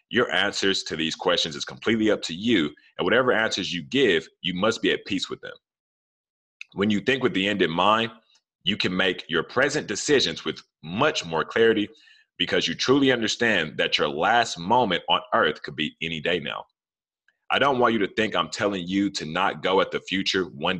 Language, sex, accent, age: English, male, American, 30-49